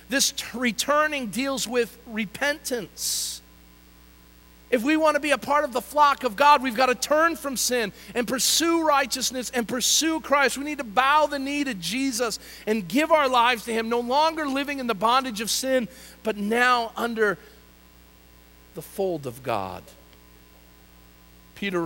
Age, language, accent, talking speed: 50-69, English, American, 160 wpm